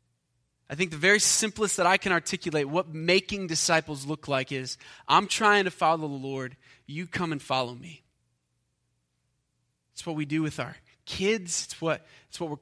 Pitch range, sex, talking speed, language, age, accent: 140-185 Hz, male, 180 wpm, English, 20-39, American